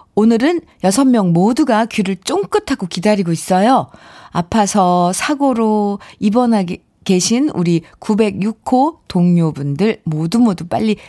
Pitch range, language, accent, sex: 170-235 Hz, Korean, native, female